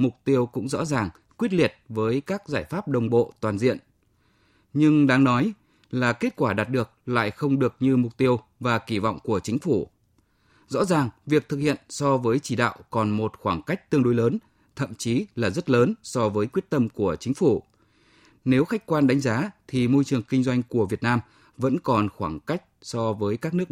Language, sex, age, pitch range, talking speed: Vietnamese, male, 20-39, 110-140 Hz, 215 wpm